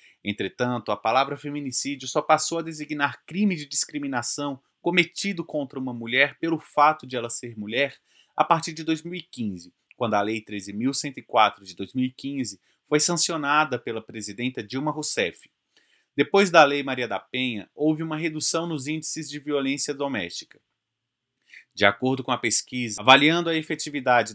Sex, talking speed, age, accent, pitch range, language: male, 145 wpm, 30-49, Brazilian, 115-150 Hz, Portuguese